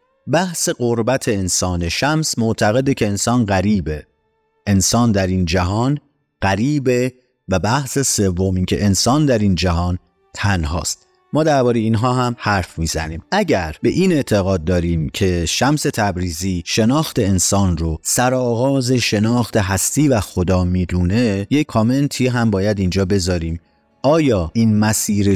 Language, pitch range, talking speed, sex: Persian, 95-125 Hz, 130 wpm, male